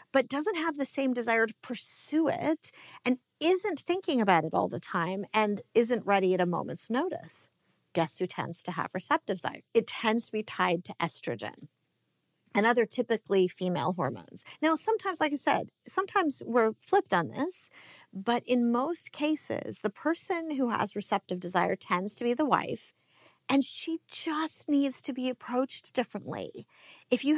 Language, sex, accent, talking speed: English, female, American, 170 wpm